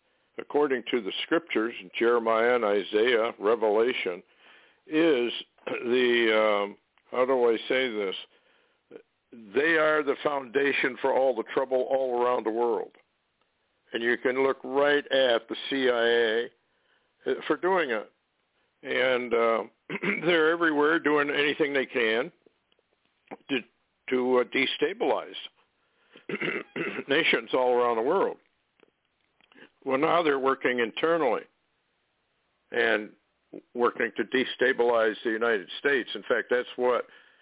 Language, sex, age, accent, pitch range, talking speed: English, male, 60-79, American, 115-170 Hz, 115 wpm